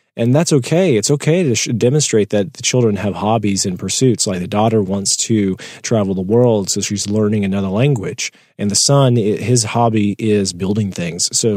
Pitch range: 105-130 Hz